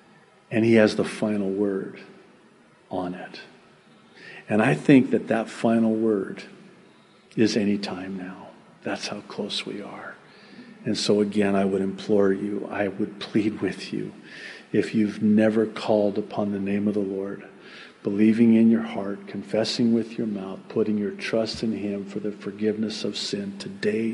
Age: 50-69